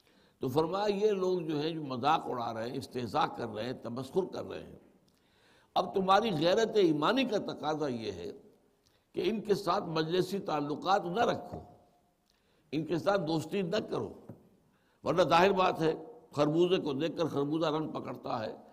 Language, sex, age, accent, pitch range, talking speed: English, male, 60-79, Indian, 135-180 Hz, 150 wpm